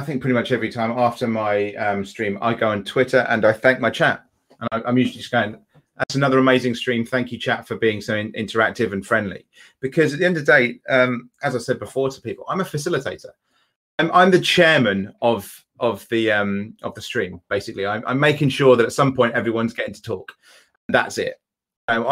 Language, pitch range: English, 115-145 Hz